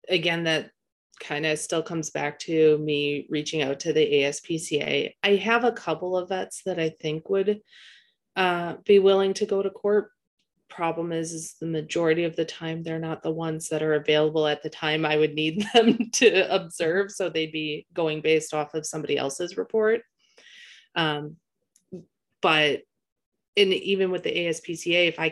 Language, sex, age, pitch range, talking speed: English, female, 30-49, 150-185 Hz, 175 wpm